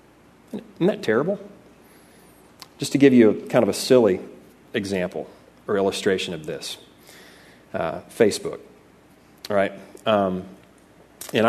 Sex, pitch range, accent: male, 105-150 Hz, American